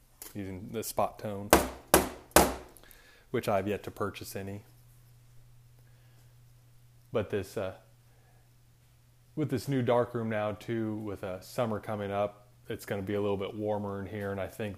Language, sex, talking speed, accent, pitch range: English, male, 160 wpm, American, 100-120 Hz